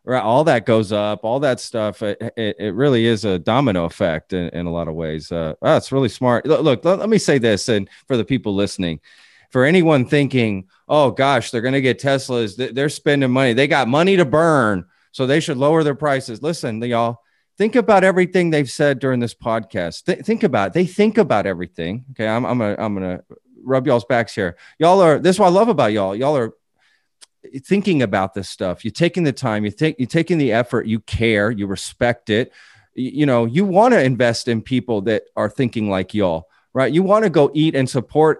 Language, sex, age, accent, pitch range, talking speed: English, male, 30-49, American, 110-150 Hz, 210 wpm